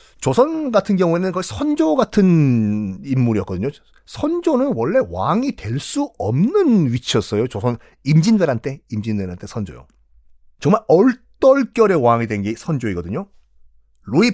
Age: 40-59